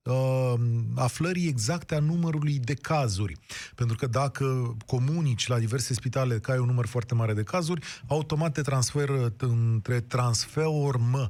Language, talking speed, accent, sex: Romanian, 145 wpm, native, male